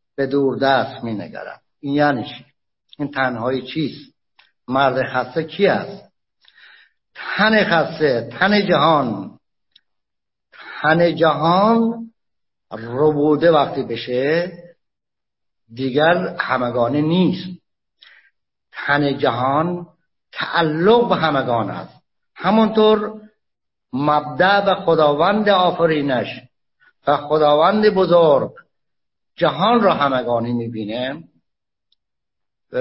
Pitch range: 125-175 Hz